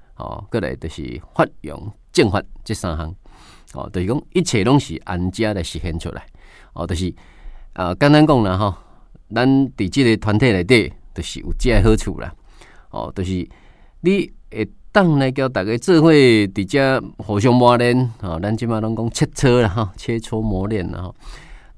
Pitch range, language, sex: 90-120 Hz, Chinese, male